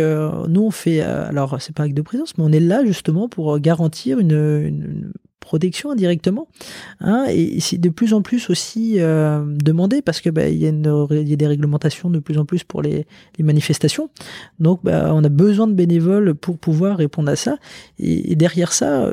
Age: 20-39